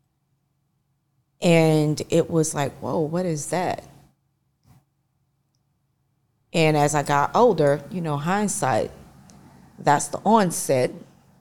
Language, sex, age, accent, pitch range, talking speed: English, female, 20-39, American, 135-150 Hz, 100 wpm